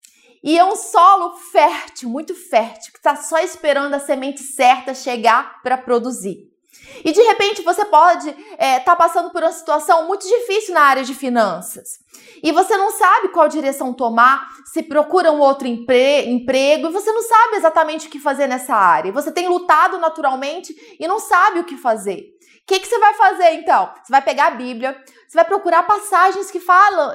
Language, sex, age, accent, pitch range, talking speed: Portuguese, female, 20-39, Brazilian, 290-375 Hz, 180 wpm